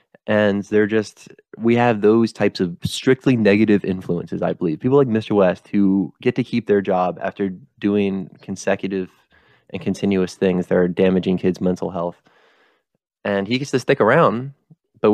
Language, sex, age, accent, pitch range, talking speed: English, male, 20-39, American, 95-120 Hz, 165 wpm